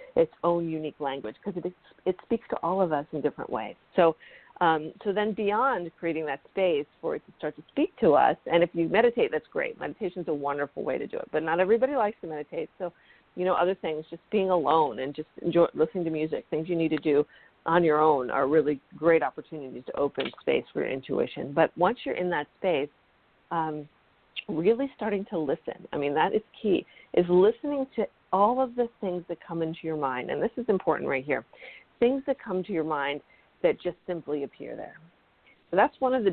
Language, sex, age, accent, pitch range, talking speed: English, female, 50-69, American, 155-205 Hz, 220 wpm